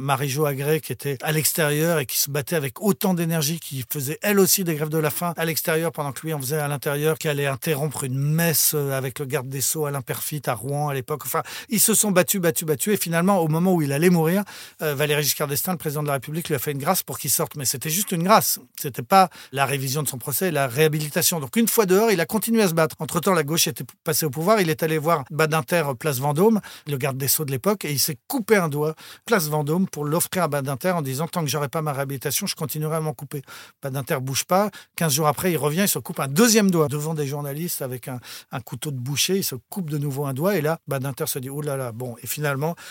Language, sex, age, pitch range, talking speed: French, male, 40-59, 140-175 Hz, 275 wpm